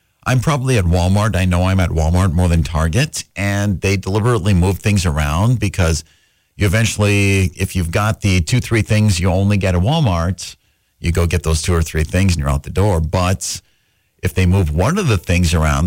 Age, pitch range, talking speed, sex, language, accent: 50-69, 85-110 Hz, 210 wpm, male, English, American